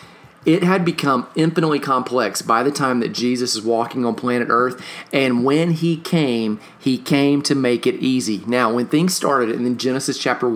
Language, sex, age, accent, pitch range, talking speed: English, male, 40-59, American, 120-150 Hz, 190 wpm